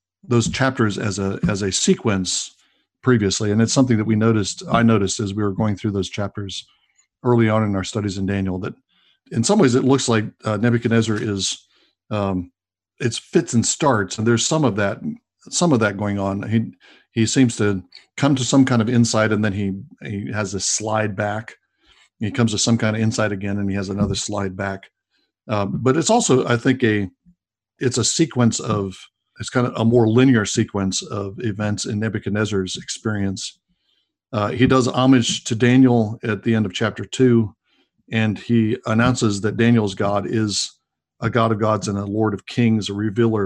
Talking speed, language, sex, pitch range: 195 wpm, English, male, 100-120 Hz